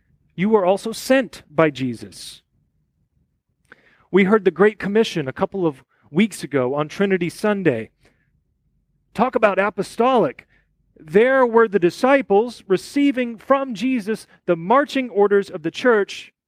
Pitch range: 170-230 Hz